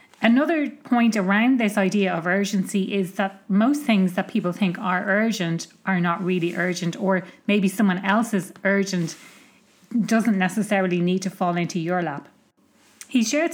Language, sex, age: English, female, 30-49